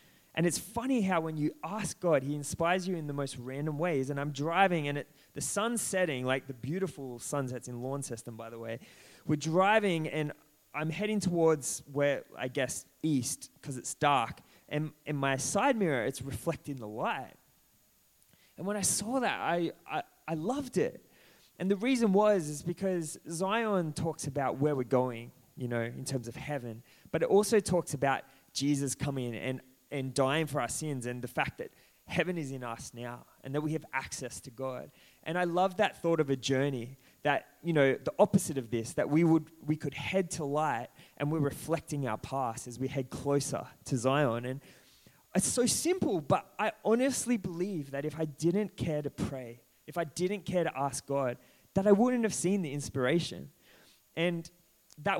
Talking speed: 195 wpm